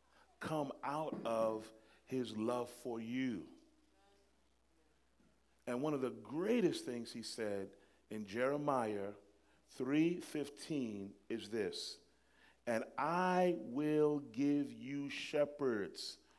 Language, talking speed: English, 95 wpm